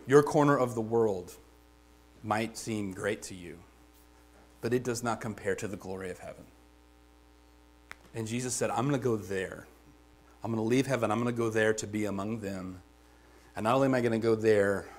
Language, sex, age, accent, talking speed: English, male, 40-59, American, 205 wpm